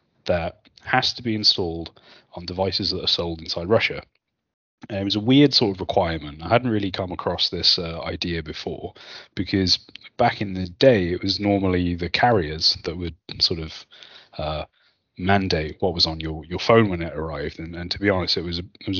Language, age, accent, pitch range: English, 30-49, British, 85-105 Hz